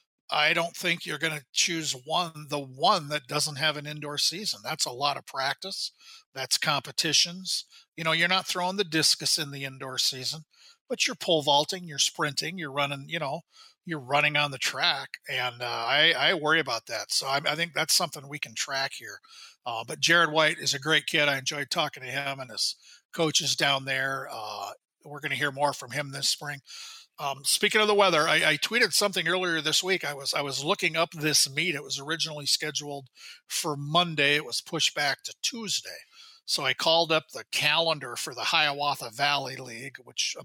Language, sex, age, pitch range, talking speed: English, male, 40-59, 140-170 Hz, 205 wpm